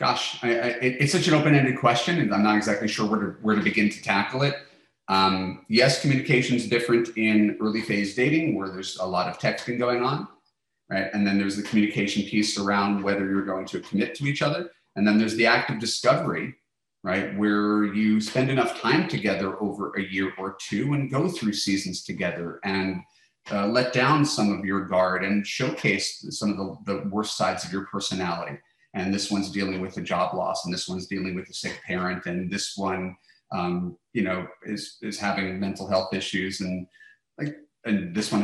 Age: 30-49